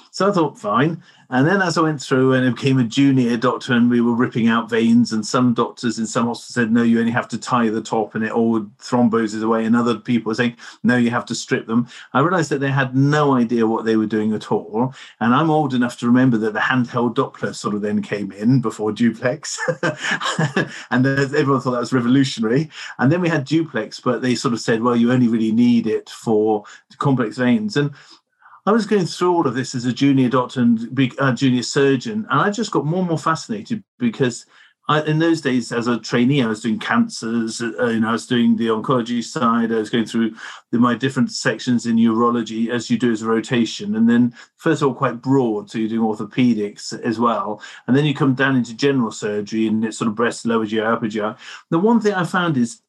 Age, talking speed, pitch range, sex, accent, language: 40-59, 225 wpm, 115-140 Hz, male, British, English